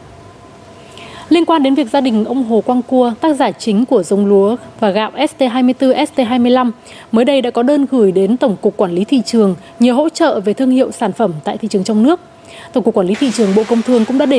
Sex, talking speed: female, 240 wpm